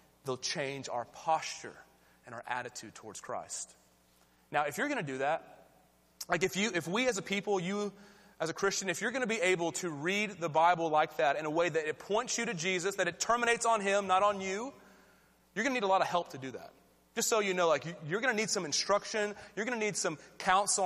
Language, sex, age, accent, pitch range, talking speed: English, male, 30-49, American, 175-230 Hz, 245 wpm